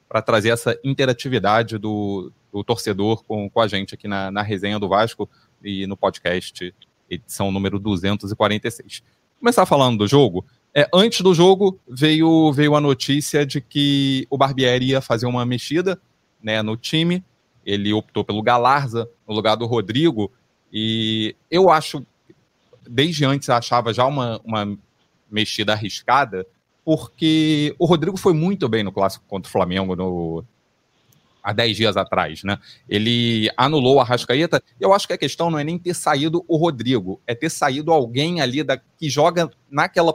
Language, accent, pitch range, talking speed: Portuguese, Brazilian, 110-155 Hz, 160 wpm